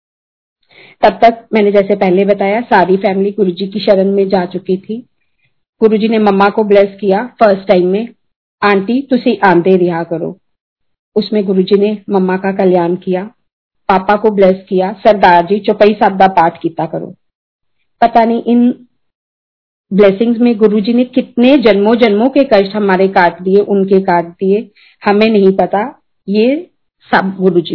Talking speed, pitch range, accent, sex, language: 135 wpm, 190-220 Hz, native, female, Hindi